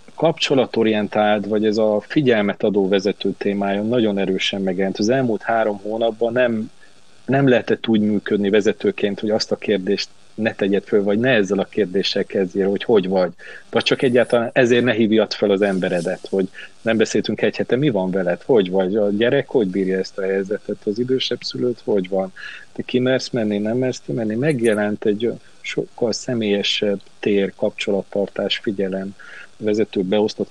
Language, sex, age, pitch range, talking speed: Hungarian, male, 30-49, 100-115 Hz, 165 wpm